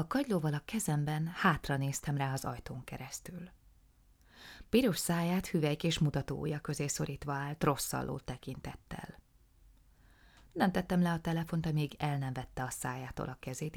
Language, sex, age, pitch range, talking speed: Hungarian, female, 20-39, 135-170 Hz, 145 wpm